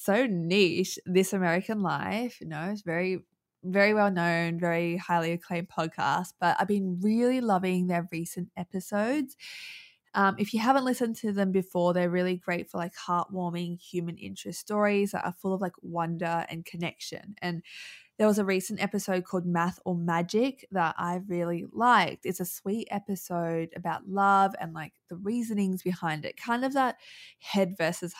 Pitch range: 170-200 Hz